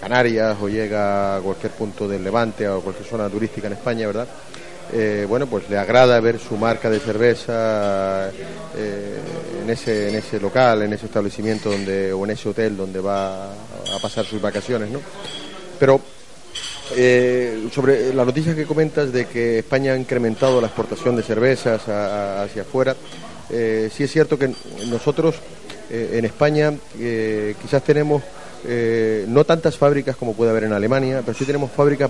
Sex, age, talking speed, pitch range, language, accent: male, 30-49, 170 wpm, 110-135 Hz, Spanish, Spanish